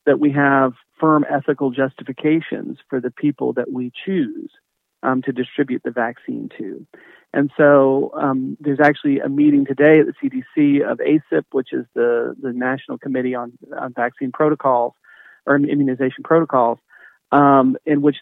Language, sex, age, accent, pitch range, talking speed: English, male, 40-59, American, 125-150 Hz, 155 wpm